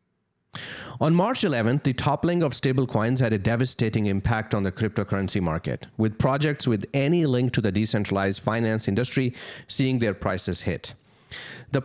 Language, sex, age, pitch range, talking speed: English, male, 30-49, 105-135 Hz, 150 wpm